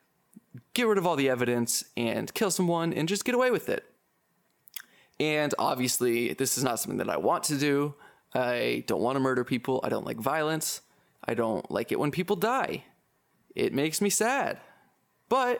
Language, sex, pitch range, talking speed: English, male, 150-220 Hz, 185 wpm